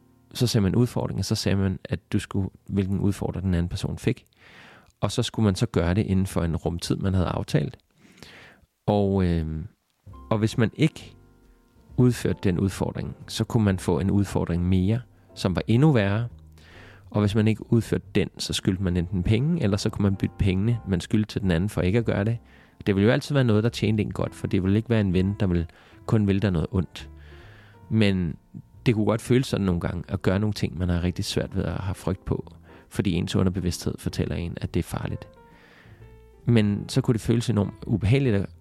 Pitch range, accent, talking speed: 90-110 Hz, native, 215 wpm